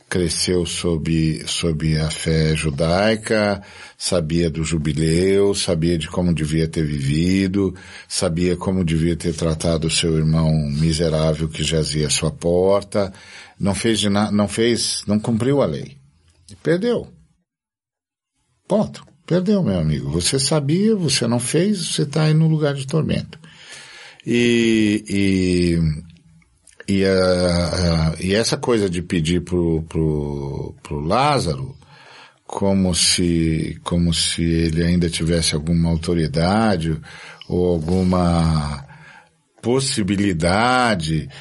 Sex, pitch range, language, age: male, 85-130 Hz, Portuguese, 50-69